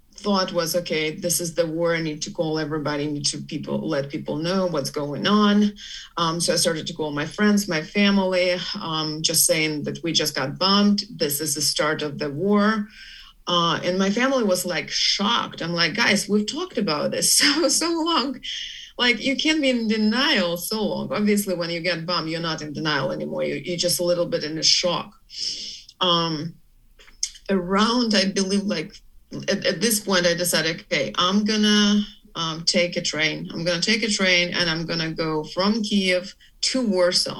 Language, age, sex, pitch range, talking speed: English, 30-49, female, 160-200 Hz, 195 wpm